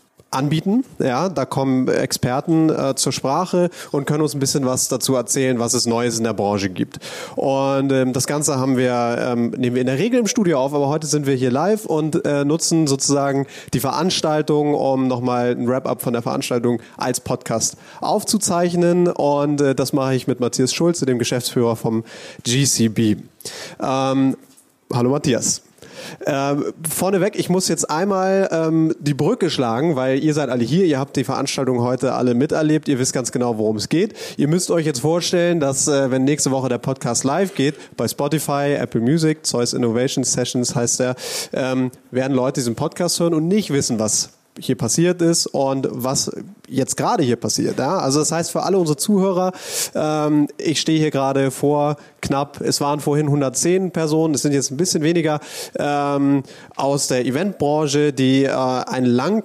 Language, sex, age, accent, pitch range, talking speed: German, male, 30-49, German, 130-160 Hz, 180 wpm